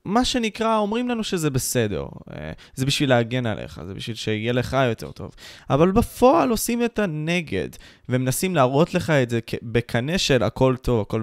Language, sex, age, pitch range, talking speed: Hebrew, male, 20-39, 110-145 Hz, 170 wpm